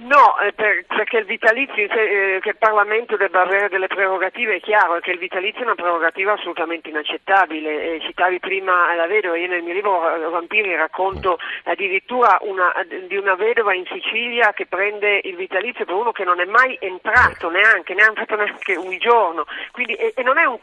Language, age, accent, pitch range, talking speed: Italian, 50-69, native, 180-220 Hz, 190 wpm